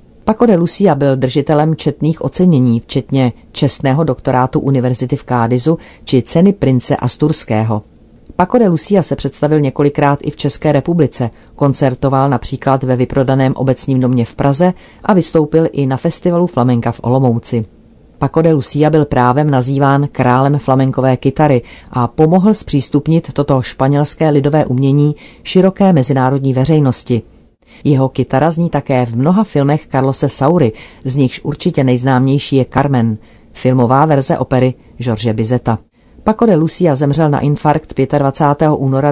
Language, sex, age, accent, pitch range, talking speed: Czech, female, 40-59, native, 130-150 Hz, 140 wpm